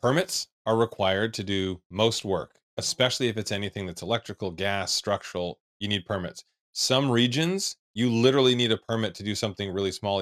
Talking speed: 175 wpm